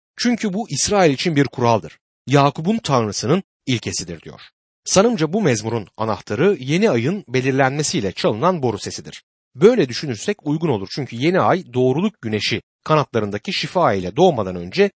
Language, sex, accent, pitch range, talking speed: Turkish, male, native, 115-185 Hz, 135 wpm